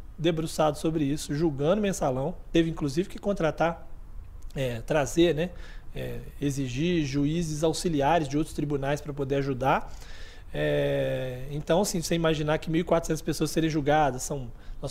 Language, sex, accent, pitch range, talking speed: Portuguese, male, Brazilian, 145-175 Hz, 135 wpm